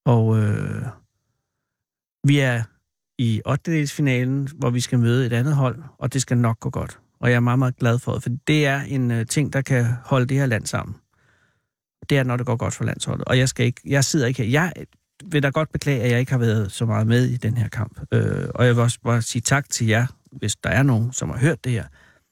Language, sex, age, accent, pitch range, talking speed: Danish, male, 60-79, native, 115-150 Hz, 245 wpm